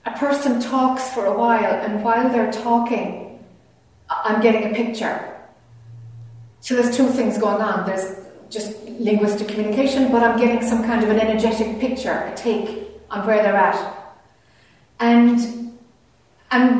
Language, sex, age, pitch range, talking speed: English, female, 40-59, 210-255 Hz, 145 wpm